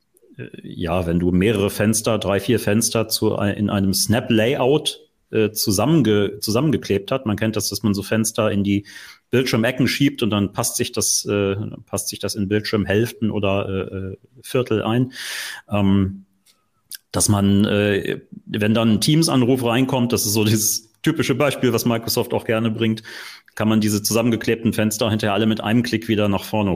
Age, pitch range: 40-59, 100-120 Hz